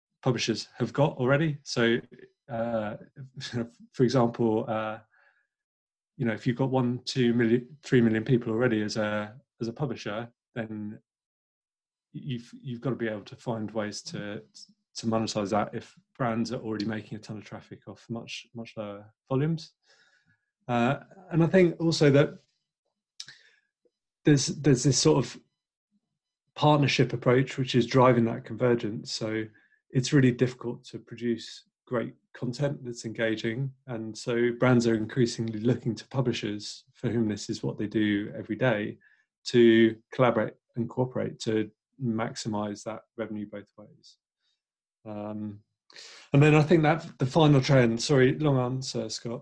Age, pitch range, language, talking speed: 30-49, 110-135 Hz, English, 150 wpm